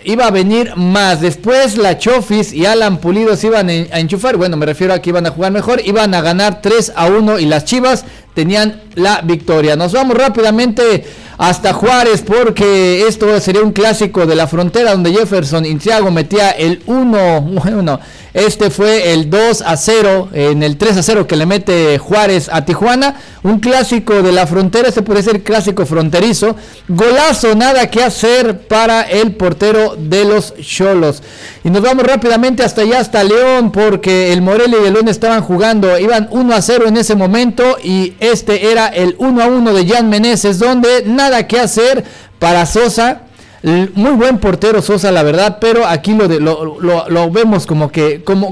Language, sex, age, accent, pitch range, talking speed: Spanish, male, 50-69, Mexican, 180-225 Hz, 185 wpm